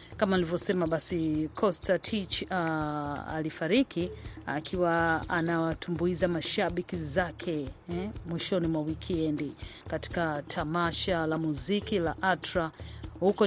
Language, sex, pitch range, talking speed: Swahili, female, 160-180 Hz, 100 wpm